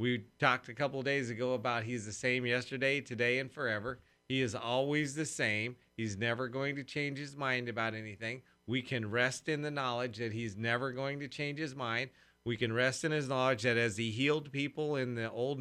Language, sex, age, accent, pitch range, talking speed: English, male, 40-59, American, 105-135 Hz, 215 wpm